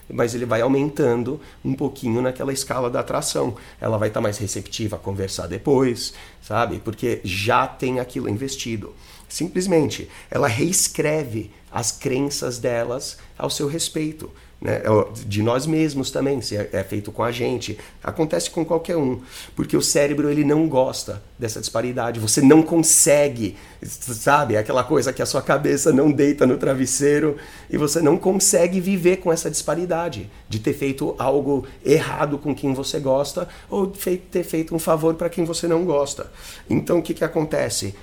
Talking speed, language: 160 wpm, Portuguese